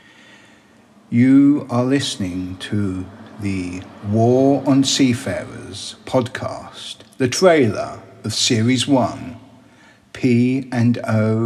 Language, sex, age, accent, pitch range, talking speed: English, male, 50-69, British, 105-125 Hz, 80 wpm